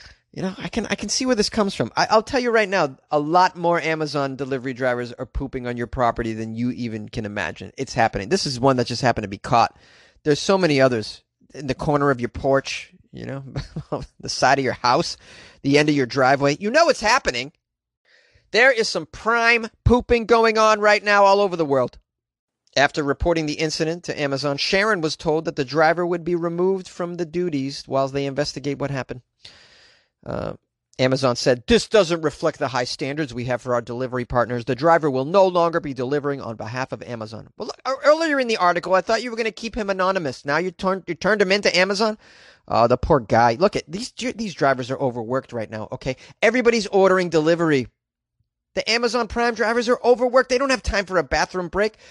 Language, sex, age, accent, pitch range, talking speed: English, male, 30-49, American, 135-210 Hz, 215 wpm